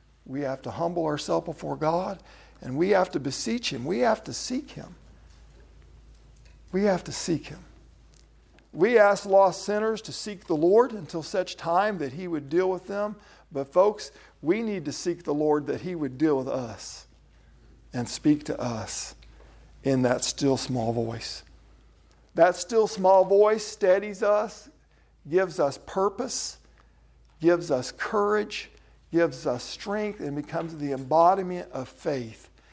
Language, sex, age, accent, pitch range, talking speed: English, male, 50-69, American, 125-185 Hz, 155 wpm